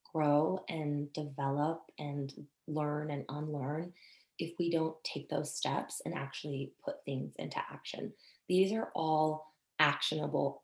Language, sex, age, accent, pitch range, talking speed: English, female, 20-39, American, 150-180 Hz, 130 wpm